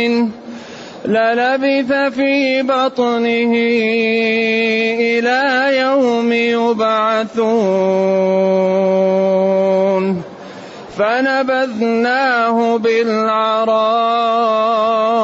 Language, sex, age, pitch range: Arabic, male, 30-49, 195-235 Hz